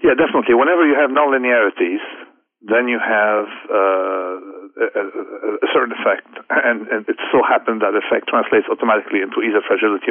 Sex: male